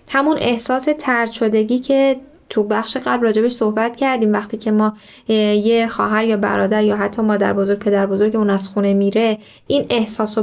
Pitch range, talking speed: 210-250 Hz, 175 wpm